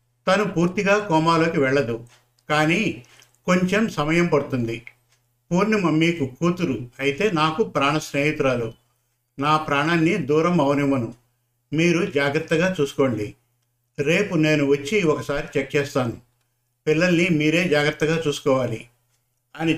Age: 50-69